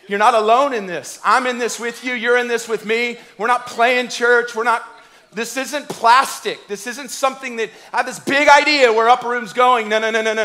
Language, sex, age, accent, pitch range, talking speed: English, male, 40-59, American, 225-280 Hz, 240 wpm